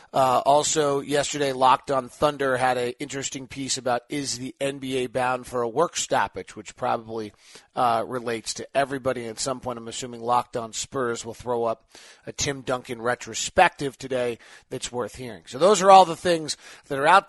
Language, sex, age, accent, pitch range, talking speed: English, male, 40-59, American, 120-150 Hz, 185 wpm